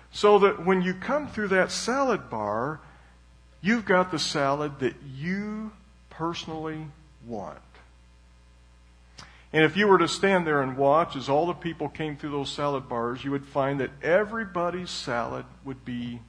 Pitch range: 100-170 Hz